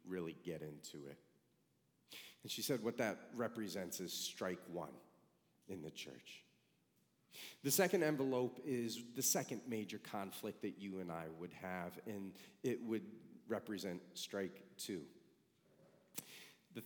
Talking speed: 130 wpm